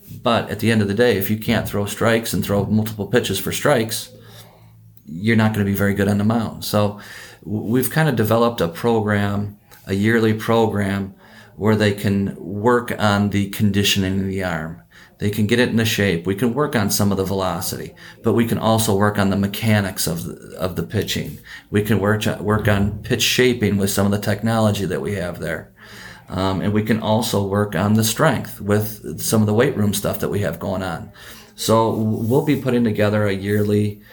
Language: English